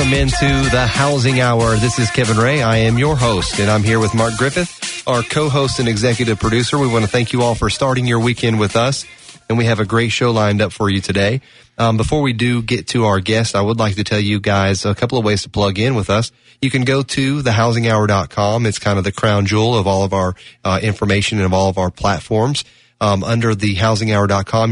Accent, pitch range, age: American, 105-120 Hz, 30-49